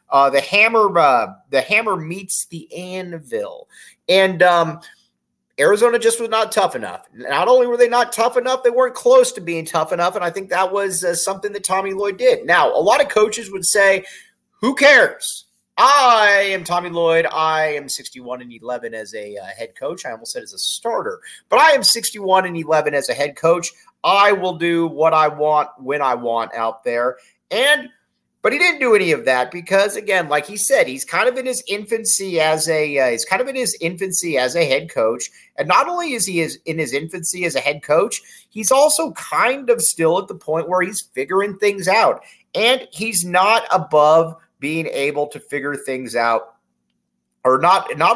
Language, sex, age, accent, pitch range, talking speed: English, male, 30-49, American, 150-230 Hz, 205 wpm